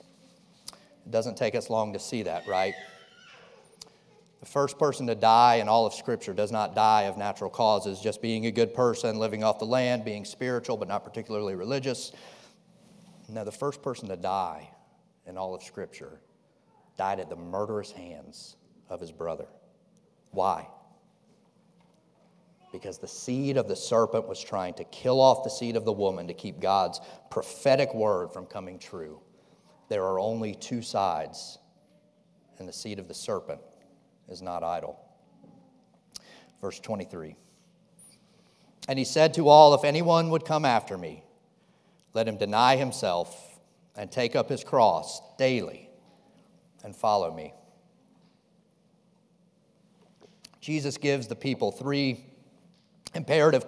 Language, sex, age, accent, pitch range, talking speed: English, male, 40-59, American, 110-170 Hz, 145 wpm